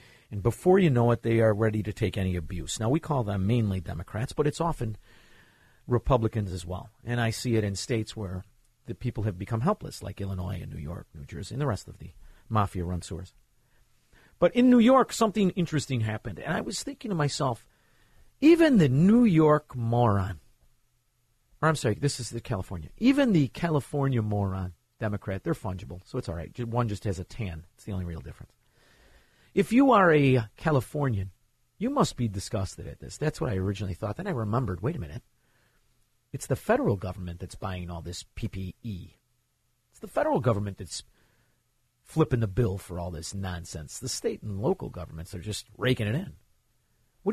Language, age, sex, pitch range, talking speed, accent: English, 50-69, male, 95-130 Hz, 190 wpm, American